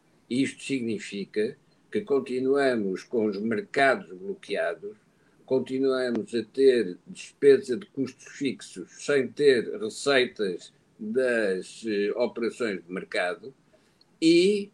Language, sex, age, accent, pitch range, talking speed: Portuguese, male, 60-79, Portuguese, 130-215 Hz, 95 wpm